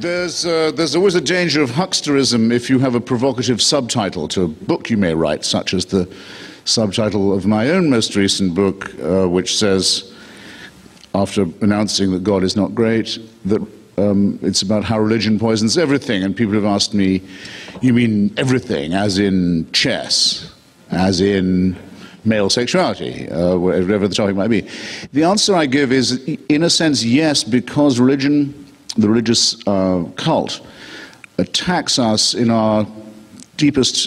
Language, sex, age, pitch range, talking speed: English, male, 50-69, 95-120 Hz, 155 wpm